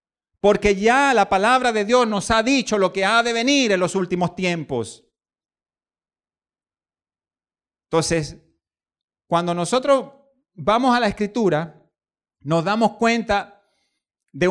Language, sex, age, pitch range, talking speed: Spanish, male, 50-69, 180-245 Hz, 120 wpm